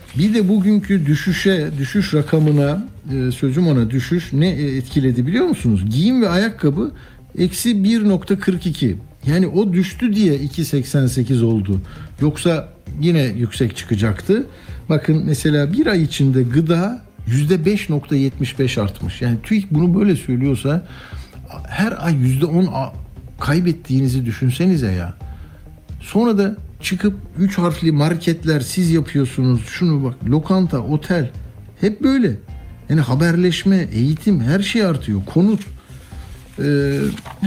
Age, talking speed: 60-79, 115 wpm